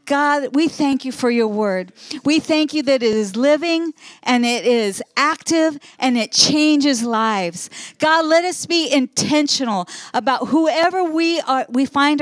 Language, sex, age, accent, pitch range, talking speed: English, female, 40-59, American, 235-300 Hz, 160 wpm